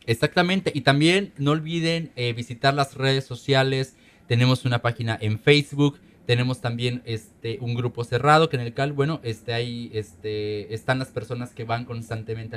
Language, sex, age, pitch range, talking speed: Spanish, male, 30-49, 115-145 Hz, 165 wpm